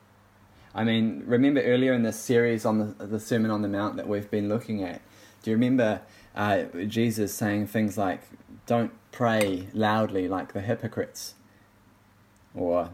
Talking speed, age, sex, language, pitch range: 160 wpm, 20-39, male, English, 100-110 Hz